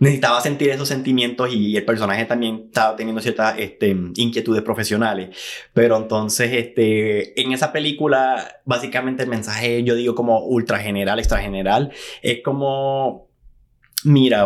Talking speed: 135 wpm